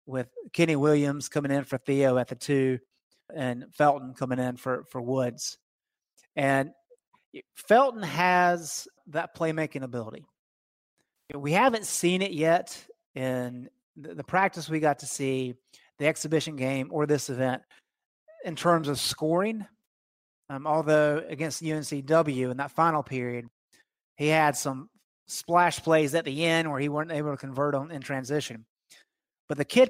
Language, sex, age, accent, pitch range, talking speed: English, male, 30-49, American, 130-160 Hz, 145 wpm